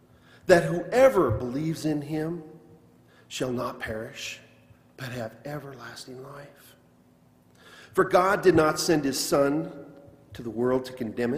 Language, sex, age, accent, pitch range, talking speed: English, male, 40-59, American, 115-160 Hz, 125 wpm